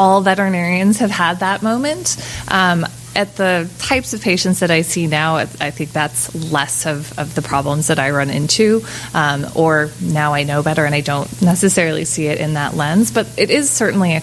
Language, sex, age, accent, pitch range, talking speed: English, female, 20-39, American, 155-225 Hz, 205 wpm